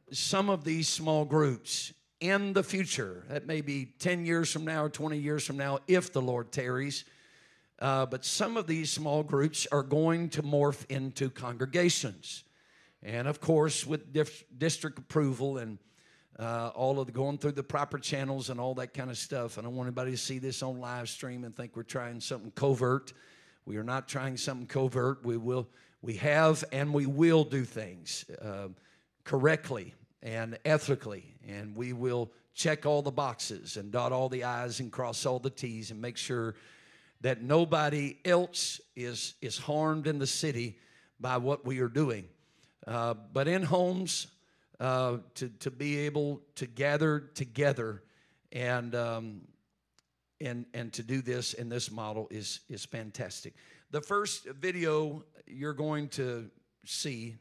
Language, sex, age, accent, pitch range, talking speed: English, male, 50-69, American, 120-150 Hz, 165 wpm